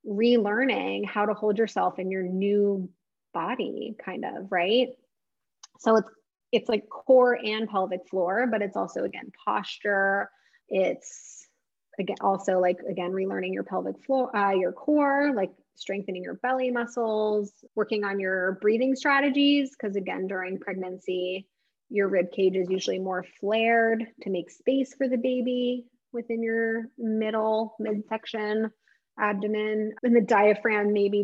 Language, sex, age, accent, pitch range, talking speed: English, female, 20-39, American, 190-240 Hz, 140 wpm